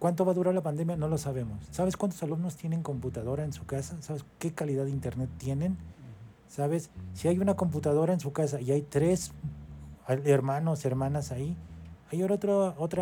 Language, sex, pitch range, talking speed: Spanish, male, 130-170 Hz, 180 wpm